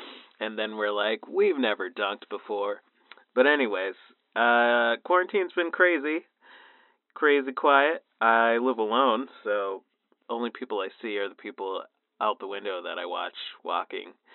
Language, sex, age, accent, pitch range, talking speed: English, male, 30-49, American, 115-185 Hz, 140 wpm